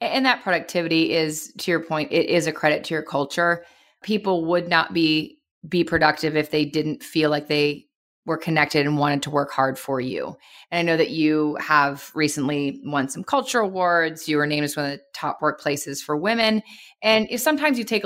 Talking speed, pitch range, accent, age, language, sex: 205 wpm, 155-190 Hz, American, 30-49, English, female